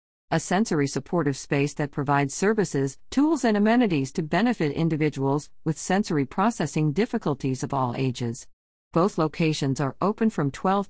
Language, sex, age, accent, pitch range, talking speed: English, female, 50-69, American, 140-190 Hz, 145 wpm